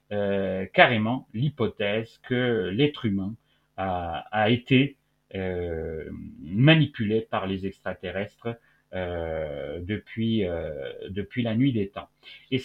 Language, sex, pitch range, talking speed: French, male, 95-125 Hz, 110 wpm